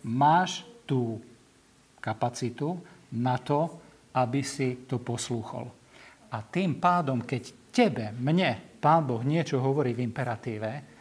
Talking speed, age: 115 wpm, 50-69